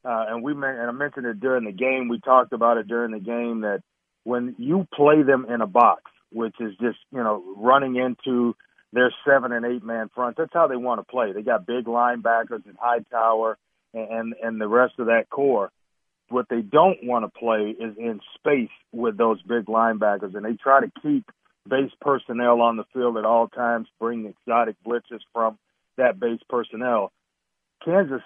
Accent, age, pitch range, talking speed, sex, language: American, 40-59, 115-130 Hz, 195 wpm, male, English